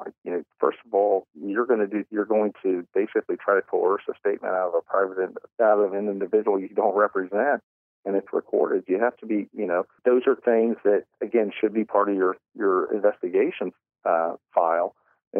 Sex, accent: male, American